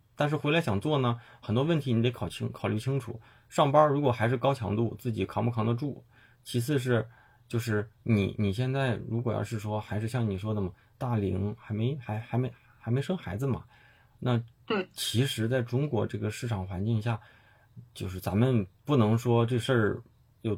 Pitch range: 110-125 Hz